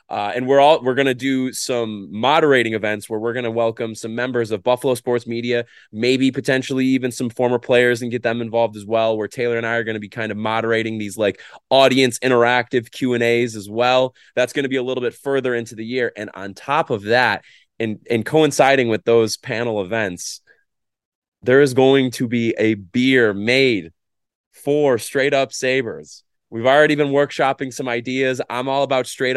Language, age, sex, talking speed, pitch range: English, 20-39, male, 200 wpm, 115-135 Hz